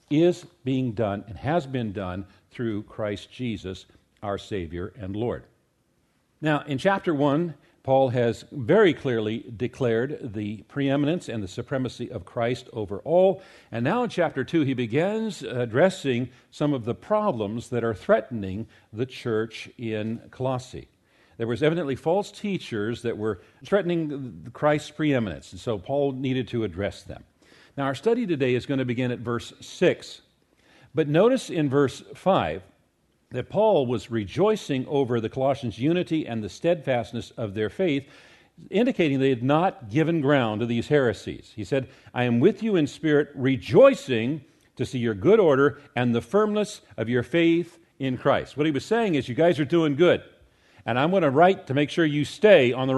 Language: English